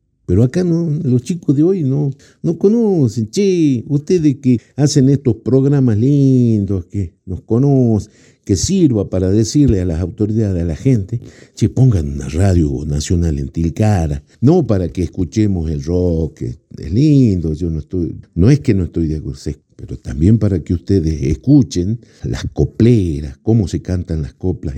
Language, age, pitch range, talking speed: Spanish, 60-79, 80-115 Hz, 165 wpm